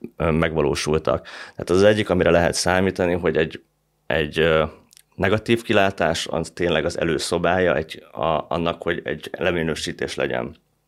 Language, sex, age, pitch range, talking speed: Hungarian, male, 30-49, 80-100 Hz, 130 wpm